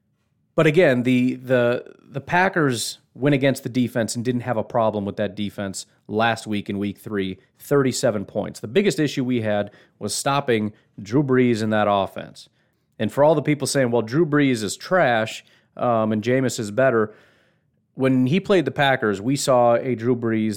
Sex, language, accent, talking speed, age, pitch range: male, English, American, 185 wpm, 30-49, 105-130 Hz